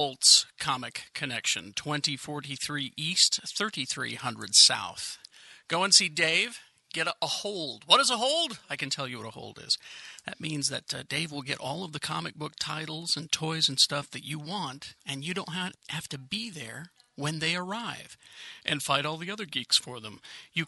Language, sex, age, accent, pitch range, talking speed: English, male, 40-59, American, 135-170 Hz, 195 wpm